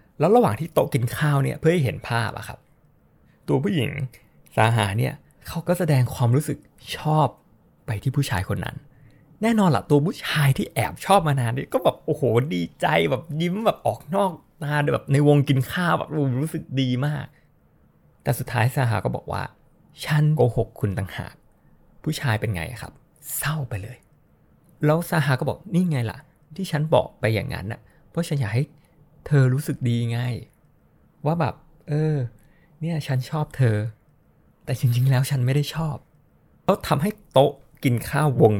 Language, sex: Thai, male